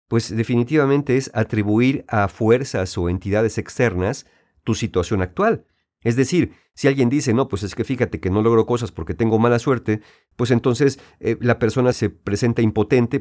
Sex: male